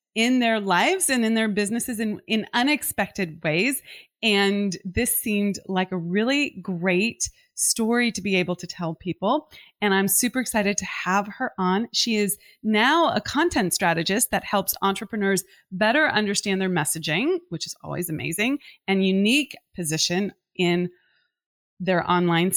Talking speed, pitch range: 150 wpm, 180-235 Hz